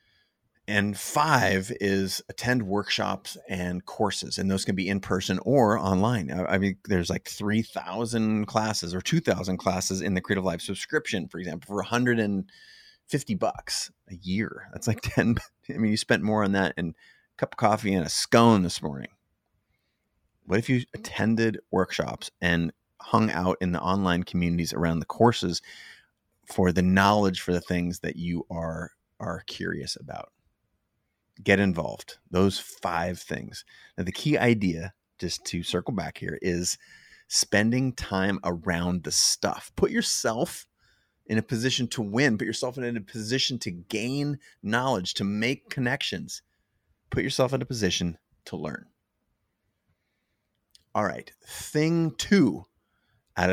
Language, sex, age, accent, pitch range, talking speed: English, male, 30-49, American, 90-115 Hz, 150 wpm